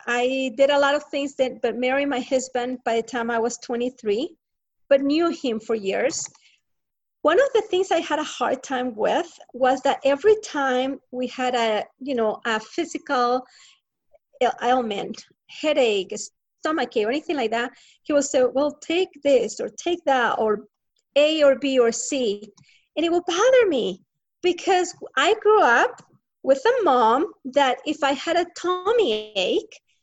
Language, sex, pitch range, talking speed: English, female, 250-320 Hz, 170 wpm